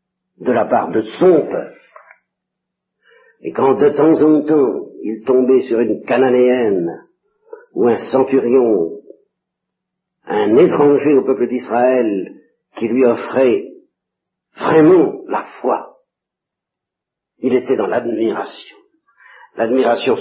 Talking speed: 105 wpm